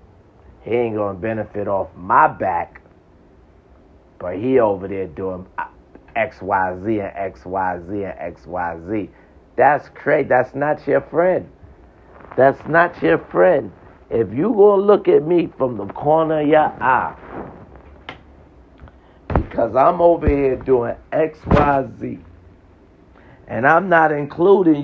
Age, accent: 50-69, American